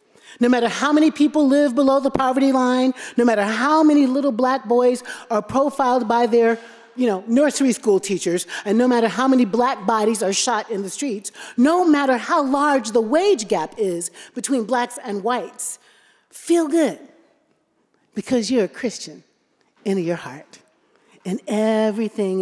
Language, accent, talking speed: English, American, 165 wpm